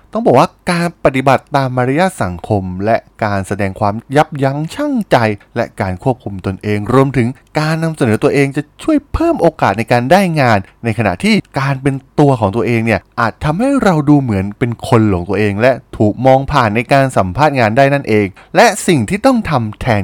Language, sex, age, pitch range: Thai, male, 20-39, 105-170 Hz